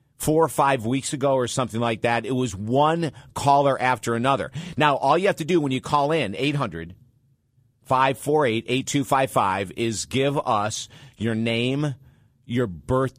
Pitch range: 120-140 Hz